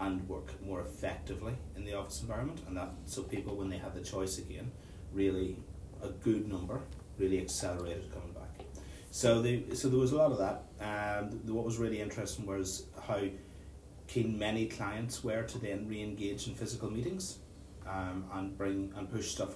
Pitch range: 95-105 Hz